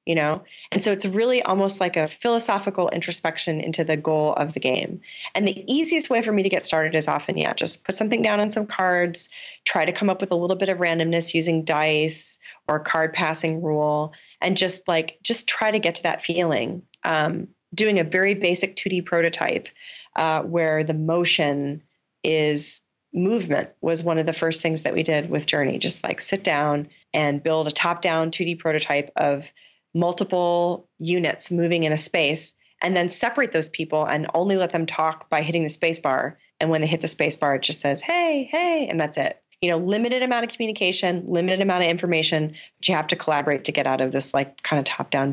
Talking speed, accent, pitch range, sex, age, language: 210 wpm, American, 155-190 Hz, female, 30-49, English